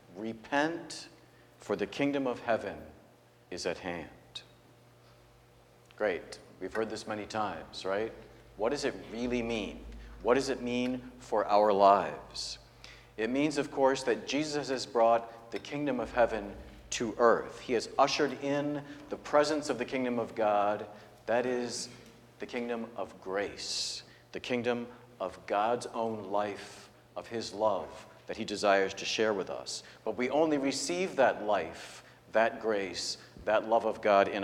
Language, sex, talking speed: English, male, 155 wpm